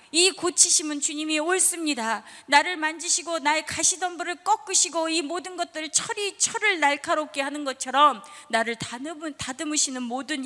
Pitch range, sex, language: 185-295 Hz, female, Korean